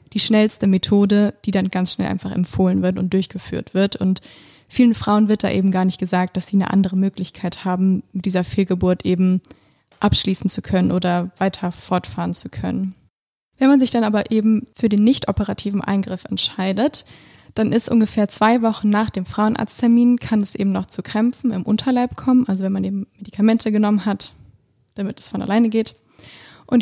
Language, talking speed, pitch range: German, 185 wpm, 190-230 Hz